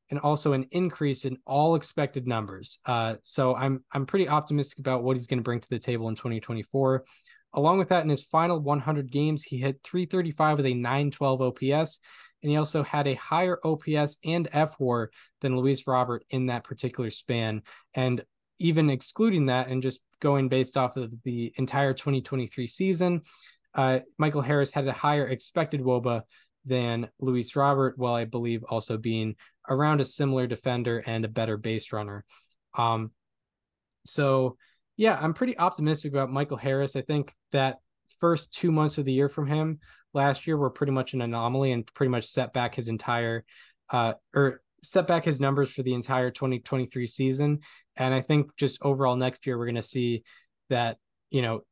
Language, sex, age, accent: English, male, 10-29, American